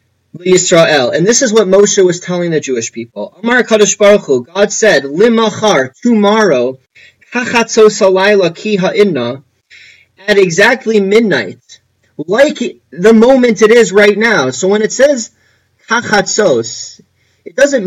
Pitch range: 135-190 Hz